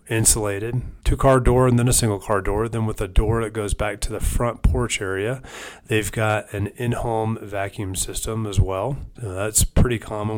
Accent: American